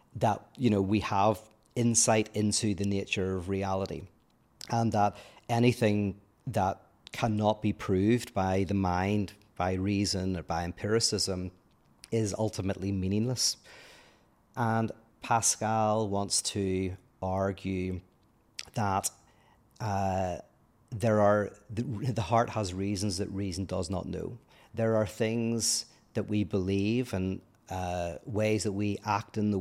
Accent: British